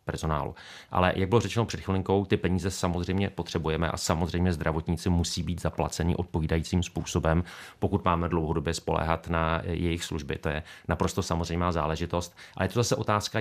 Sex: male